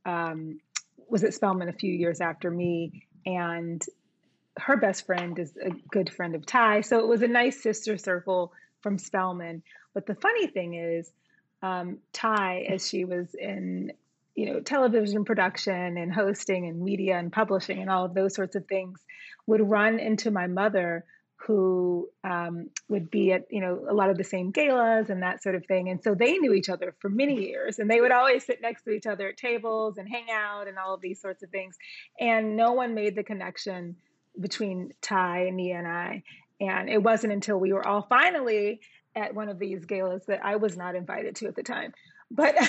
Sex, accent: female, American